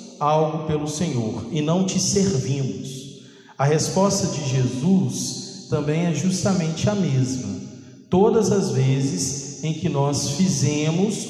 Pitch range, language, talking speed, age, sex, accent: 130-175 Hz, Portuguese, 120 wpm, 40-59, male, Brazilian